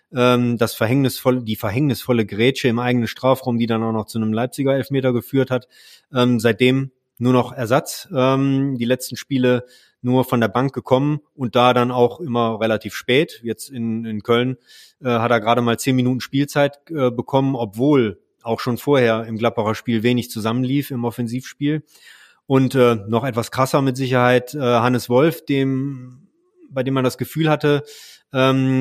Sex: male